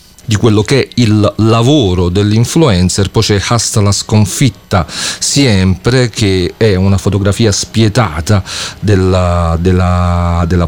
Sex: male